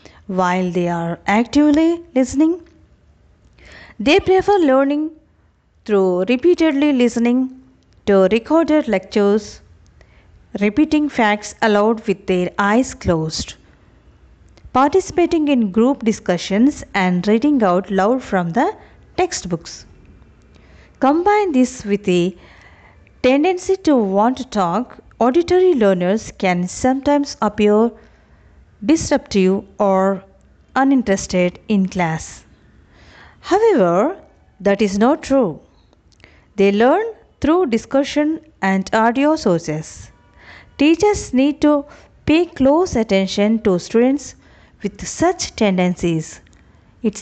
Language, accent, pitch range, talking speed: Telugu, native, 190-290 Hz, 95 wpm